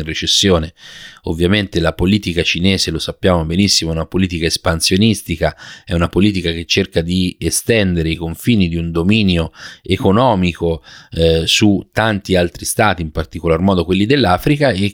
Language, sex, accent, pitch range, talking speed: Italian, male, native, 85-100 Hz, 145 wpm